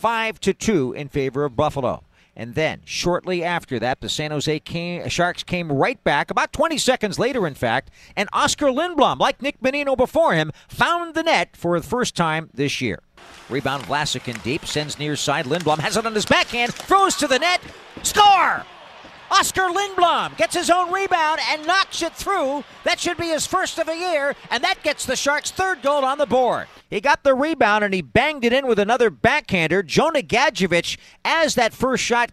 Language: English